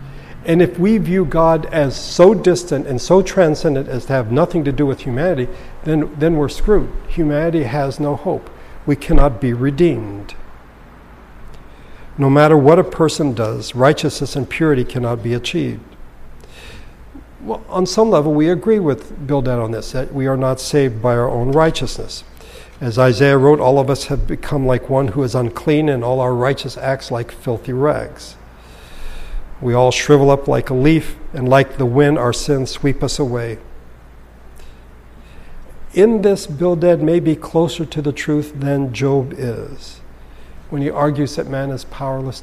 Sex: male